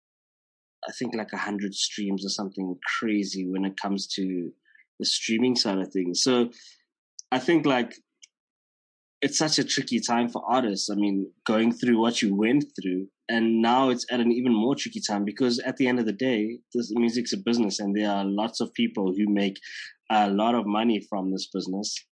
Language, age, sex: English, 20-39, male